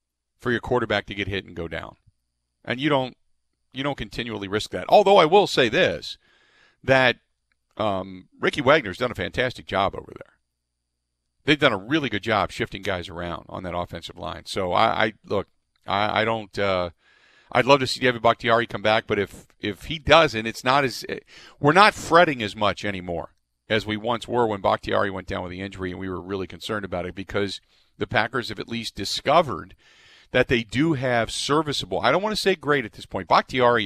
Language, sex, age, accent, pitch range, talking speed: English, male, 50-69, American, 85-120 Hz, 205 wpm